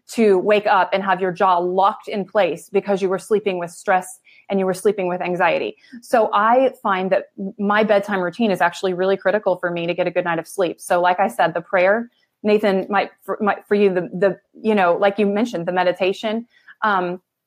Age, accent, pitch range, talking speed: 30-49, American, 180-215 Hz, 215 wpm